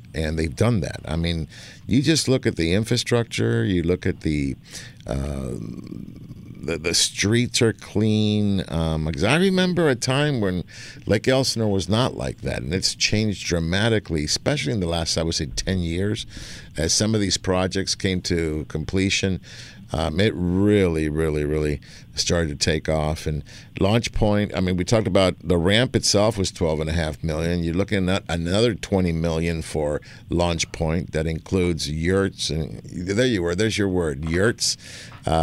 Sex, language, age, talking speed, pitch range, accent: male, English, 50-69, 170 wpm, 80-110 Hz, American